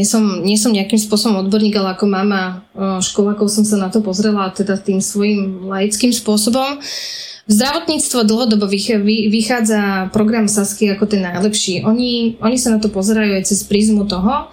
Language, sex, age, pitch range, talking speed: Slovak, female, 20-39, 195-220 Hz, 155 wpm